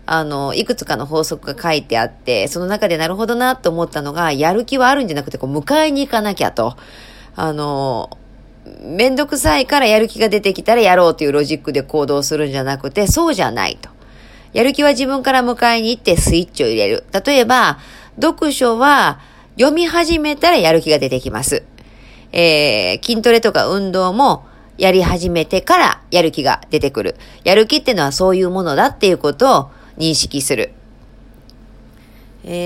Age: 40-59